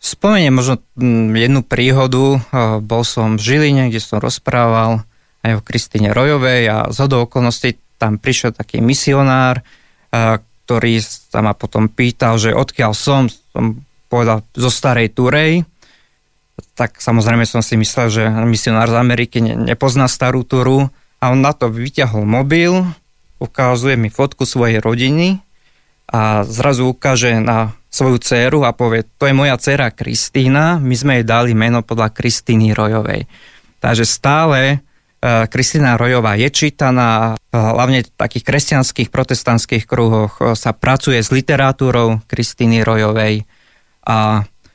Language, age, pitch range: Slovak, 20-39, 115-130 Hz